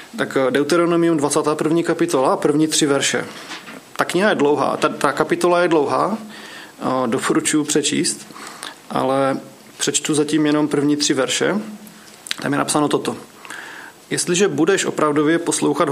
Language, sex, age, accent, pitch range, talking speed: Czech, male, 30-49, native, 135-160 Hz, 125 wpm